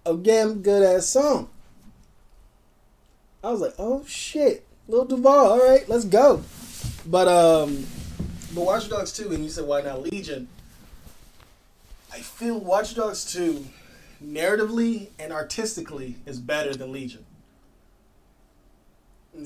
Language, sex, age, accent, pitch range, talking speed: English, male, 20-39, American, 140-180 Hz, 120 wpm